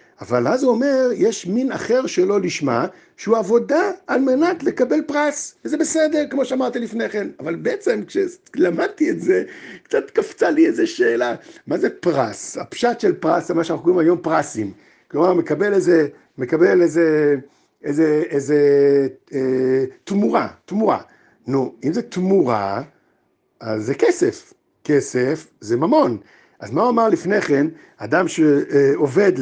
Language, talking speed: Hebrew, 145 wpm